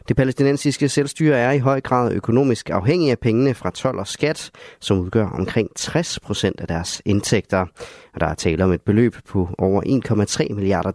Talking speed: 185 wpm